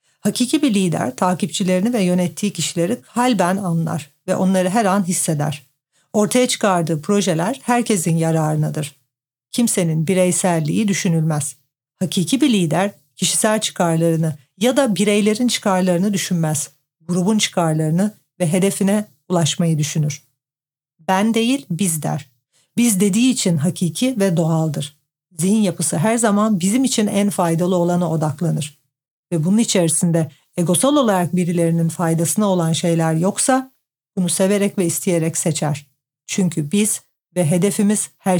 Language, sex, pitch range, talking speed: Turkish, female, 160-200 Hz, 120 wpm